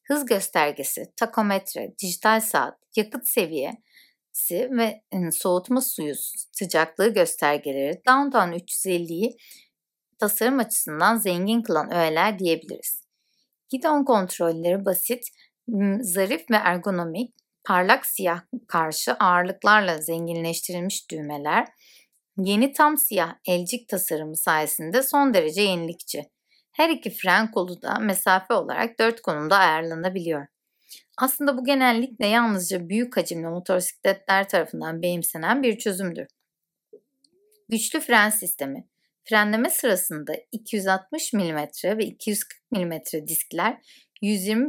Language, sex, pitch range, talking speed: Turkish, female, 170-230 Hz, 100 wpm